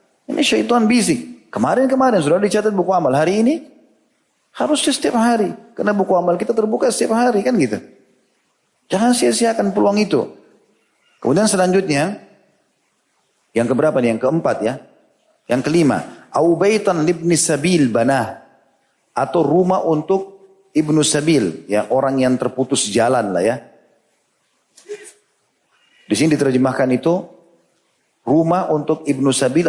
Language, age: Indonesian, 40-59